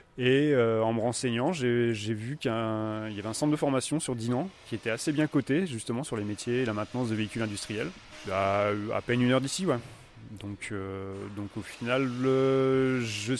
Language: French